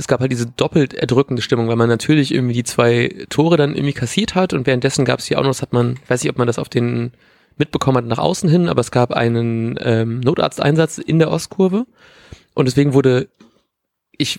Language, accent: German, German